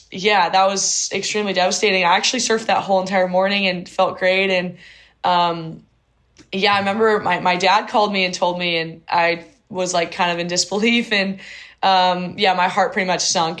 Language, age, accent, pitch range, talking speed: English, 10-29, American, 170-195 Hz, 195 wpm